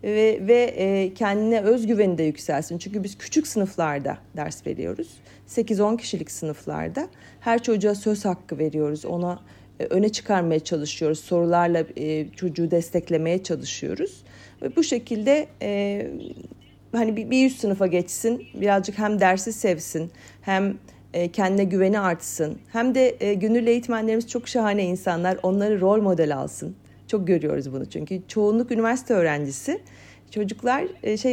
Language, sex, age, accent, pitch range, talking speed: Turkish, female, 40-59, native, 170-230 Hz, 125 wpm